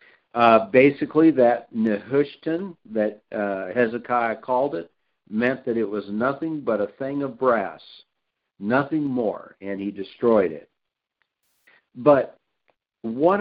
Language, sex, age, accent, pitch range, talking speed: English, male, 60-79, American, 110-135 Hz, 120 wpm